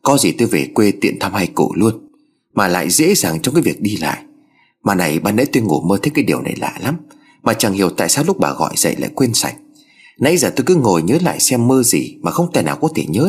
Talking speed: 275 wpm